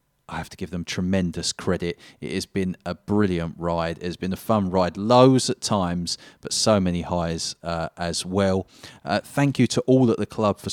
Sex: male